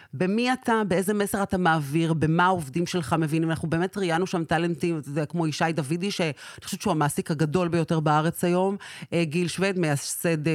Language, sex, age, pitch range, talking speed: Hebrew, female, 40-59, 165-200 Hz, 170 wpm